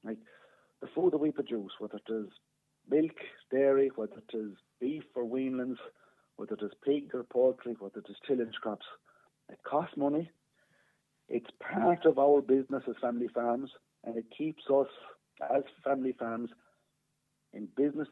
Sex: male